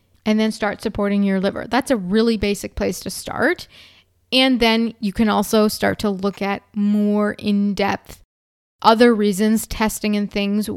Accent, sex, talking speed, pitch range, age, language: American, female, 160 wpm, 200-230 Hz, 20-39, English